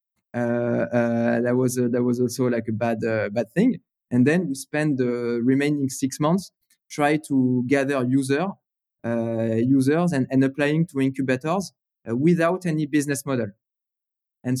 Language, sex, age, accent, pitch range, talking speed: English, male, 20-39, French, 125-160 Hz, 160 wpm